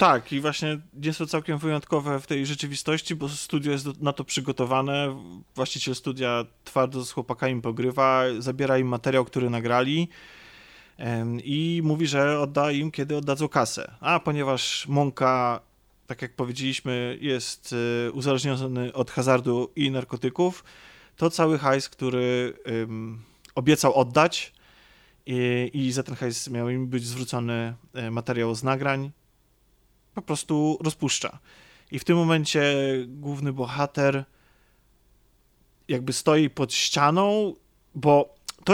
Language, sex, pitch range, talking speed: Polish, male, 130-155 Hz, 120 wpm